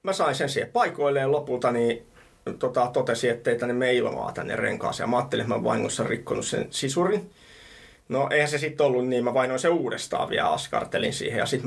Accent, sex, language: native, male, Finnish